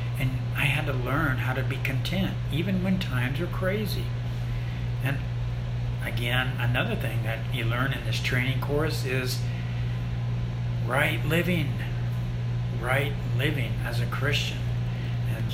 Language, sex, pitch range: English, male, 115-125 Hz